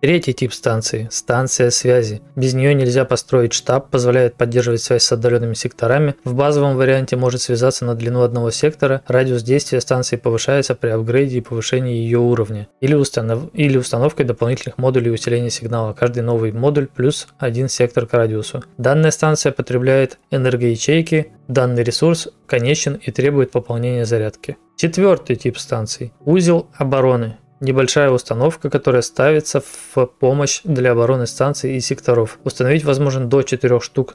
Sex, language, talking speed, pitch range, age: male, Russian, 145 wpm, 120-140 Hz, 20-39